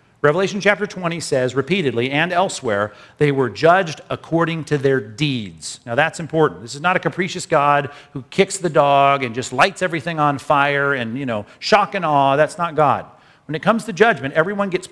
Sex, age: male, 50-69